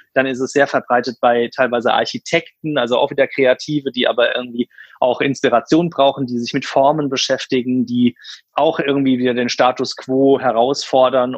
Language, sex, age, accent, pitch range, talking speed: German, male, 30-49, German, 125-150 Hz, 165 wpm